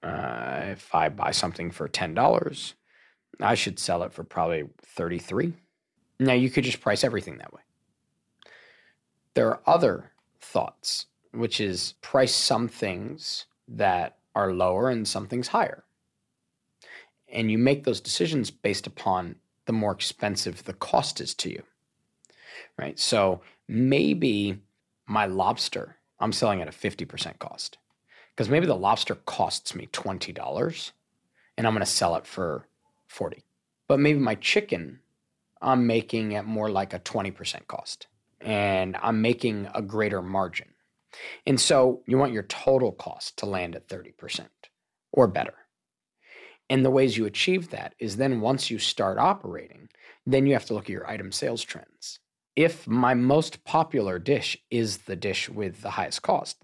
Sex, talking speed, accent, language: male, 155 wpm, American, English